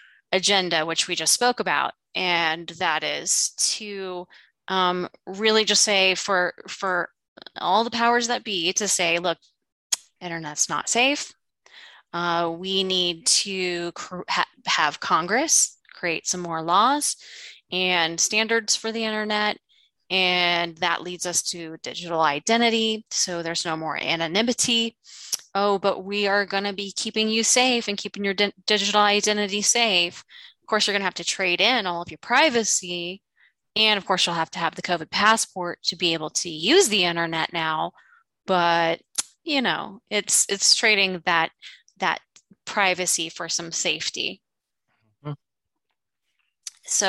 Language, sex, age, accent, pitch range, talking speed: English, female, 20-39, American, 170-215 Hz, 150 wpm